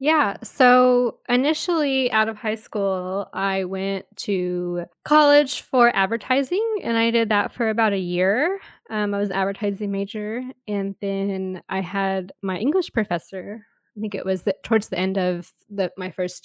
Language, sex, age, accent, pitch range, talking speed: English, female, 10-29, American, 185-220 Hz, 170 wpm